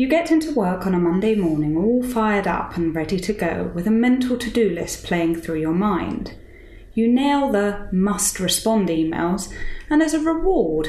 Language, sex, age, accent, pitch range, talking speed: English, female, 20-39, British, 175-245 Hz, 190 wpm